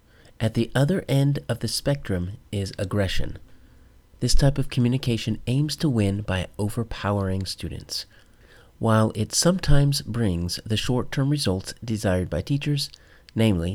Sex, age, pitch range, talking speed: male, 40-59, 95-120 Hz, 130 wpm